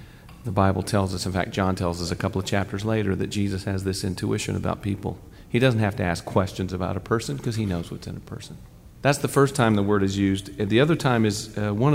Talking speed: 255 wpm